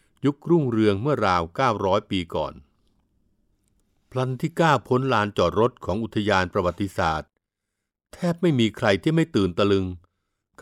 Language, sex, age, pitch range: Thai, male, 60-79, 95-125 Hz